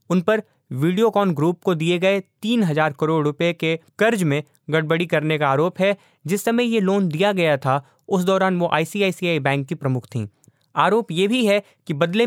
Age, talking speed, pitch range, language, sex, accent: 20-39, 190 wpm, 150-195 Hz, Hindi, male, native